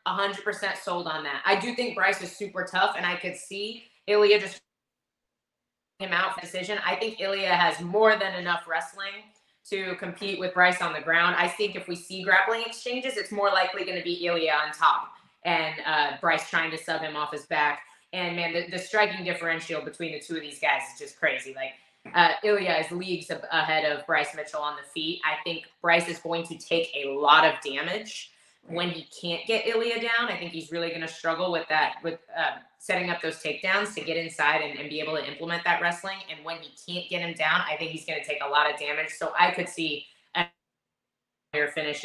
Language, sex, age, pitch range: English, female, 20-39, 160-195 Hz